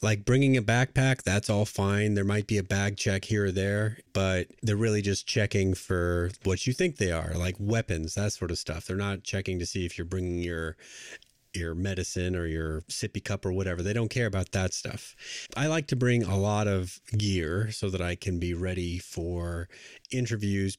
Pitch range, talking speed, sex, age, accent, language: 90-110 Hz, 210 wpm, male, 30-49, American, English